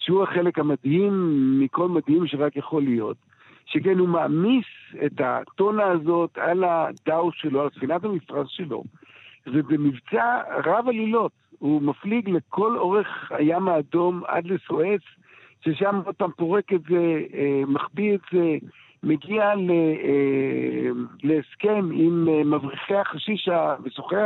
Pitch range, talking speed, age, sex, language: 150-190 Hz, 115 wpm, 60-79, male, Hebrew